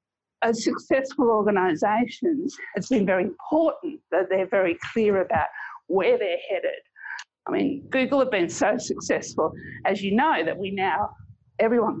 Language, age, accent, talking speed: English, 50-69, Australian, 145 wpm